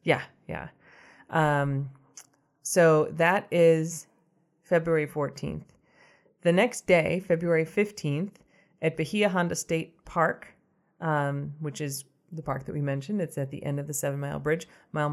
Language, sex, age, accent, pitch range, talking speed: English, female, 30-49, American, 140-165 Hz, 145 wpm